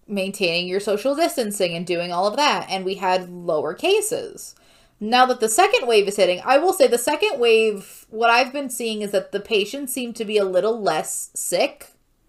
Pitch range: 180-230 Hz